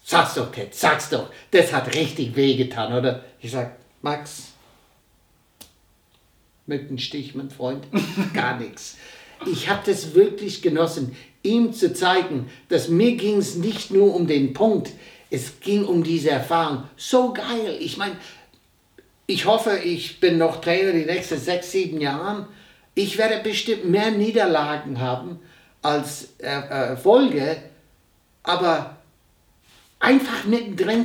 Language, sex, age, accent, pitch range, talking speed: German, male, 60-79, German, 150-225 Hz, 135 wpm